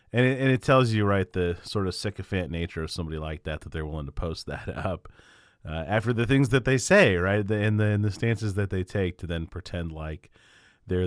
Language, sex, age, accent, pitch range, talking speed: English, male, 30-49, American, 95-120 Hz, 230 wpm